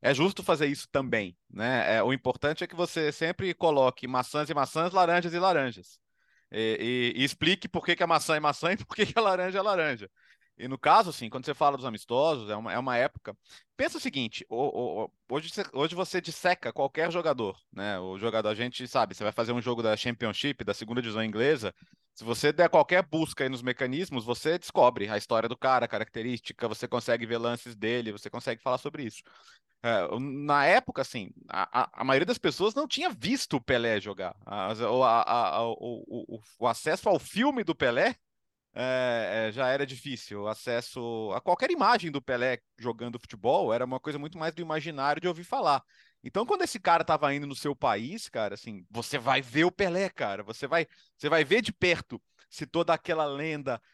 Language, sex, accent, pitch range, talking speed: Portuguese, male, Brazilian, 120-170 Hz, 205 wpm